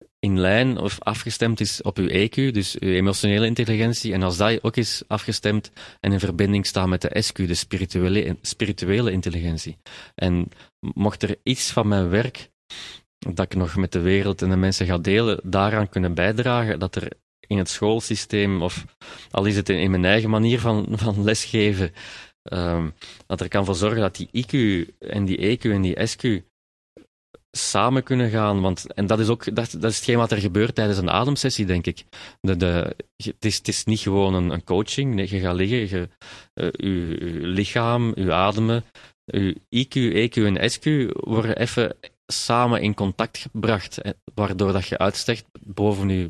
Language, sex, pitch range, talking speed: Dutch, male, 95-110 Hz, 185 wpm